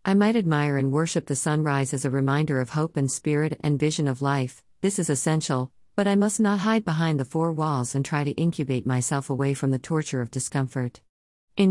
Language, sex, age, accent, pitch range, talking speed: English, female, 50-69, American, 130-160 Hz, 215 wpm